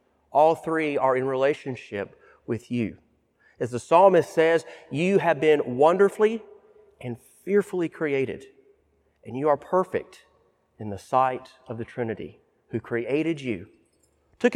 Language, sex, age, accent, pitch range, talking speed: English, male, 40-59, American, 120-160 Hz, 130 wpm